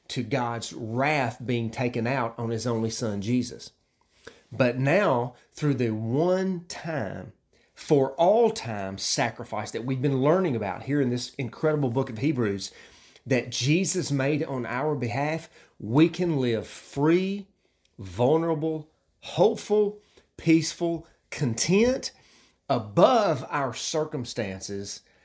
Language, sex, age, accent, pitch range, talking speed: English, male, 30-49, American, 105-145 Hz, 110 wpm